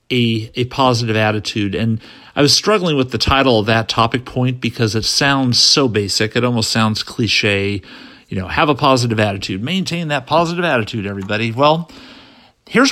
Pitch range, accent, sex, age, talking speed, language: 110-135 Hz, American, male, 50-69, 170 wpm, English